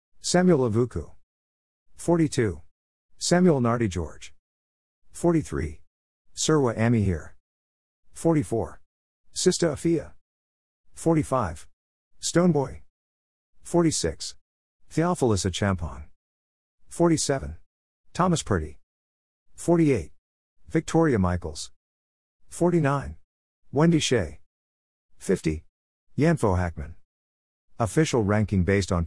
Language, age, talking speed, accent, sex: English, 50-69, 70 wpm, American, male